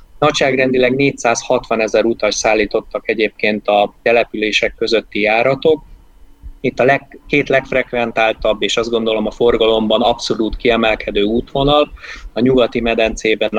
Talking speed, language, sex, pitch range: 115 wpm, Hungarian, male, 105-125 Hz